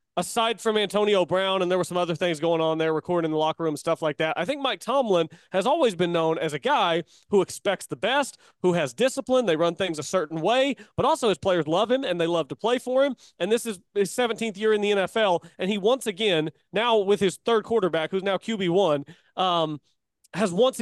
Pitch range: 170-230 Hz